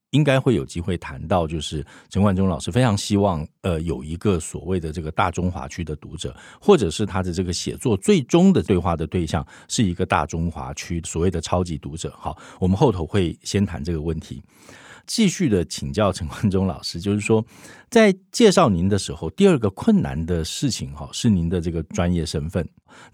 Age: 50-69